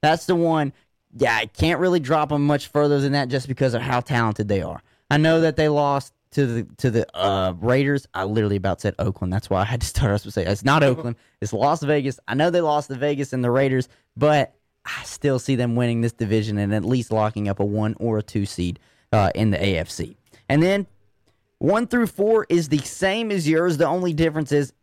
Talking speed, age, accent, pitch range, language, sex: 235 wpm, 20-39, American, 115-165 Hz, English, male